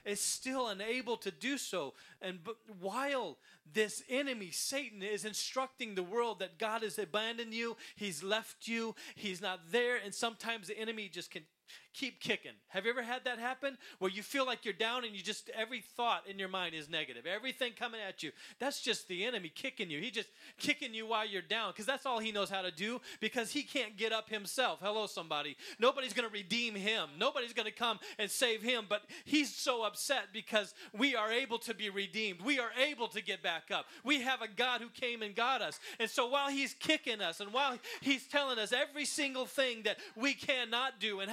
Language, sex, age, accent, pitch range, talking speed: English, male, 30-49, American, 215-265 Hz, 215 wpm